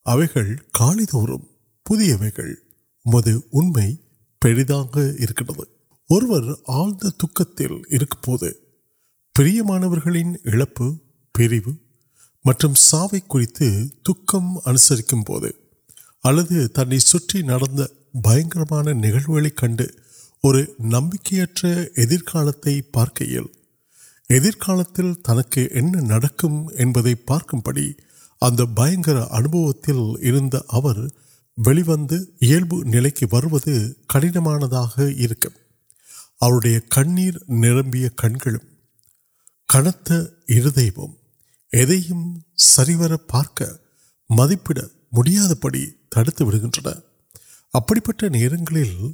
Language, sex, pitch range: Urdu, male, 120-165 Hz